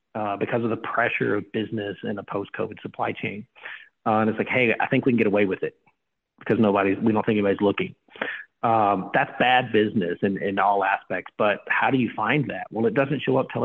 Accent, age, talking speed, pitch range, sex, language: American, 40-59, 230 wpm, 105-120 Hz, male, English